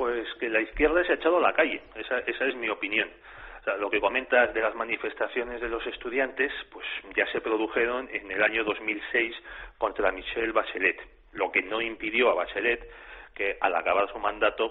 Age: 40-59